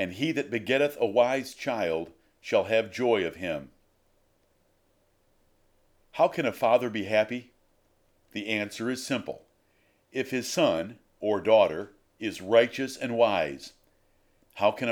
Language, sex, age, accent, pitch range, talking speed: English, male, 50-69, American, 100-125 Hz, 135 wpm